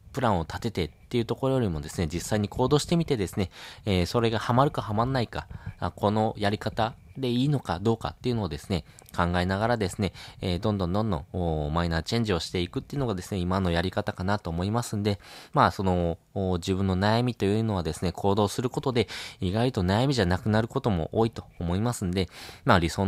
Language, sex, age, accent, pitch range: Japanese, male, 20-39, native, 90-120 Hz